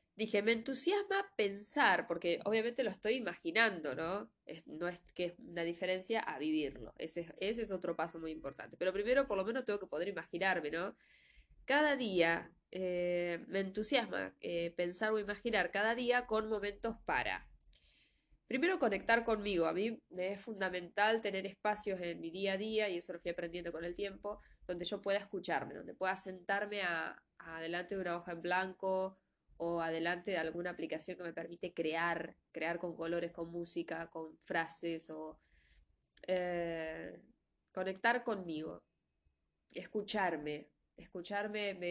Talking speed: 160 wpm